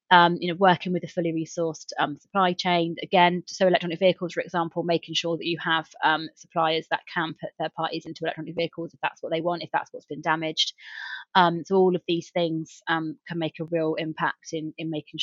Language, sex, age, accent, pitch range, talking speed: English, female, 20-39, British, 160-180 Hz, 225 wpm